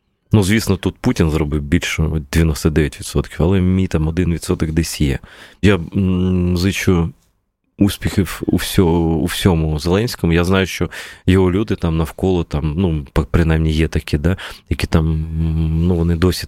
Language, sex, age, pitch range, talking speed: Ukrainian, male, 20-39, 80-95 Hz, 150 wpm